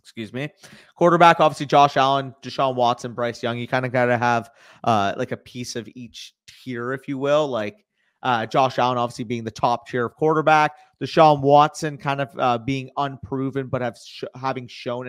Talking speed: 185 wpm